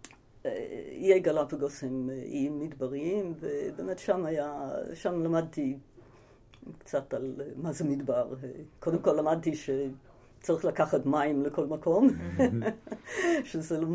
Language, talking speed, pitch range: Hebrew, 105 wpm, 135-180 Hz